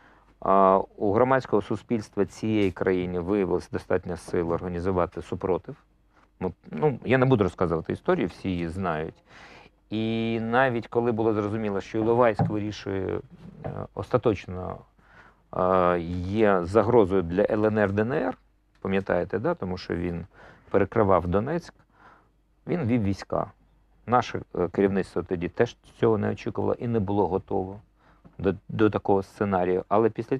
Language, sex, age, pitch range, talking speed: Ukrainian, male, 50-69, 95-125 Hz, 115 wpm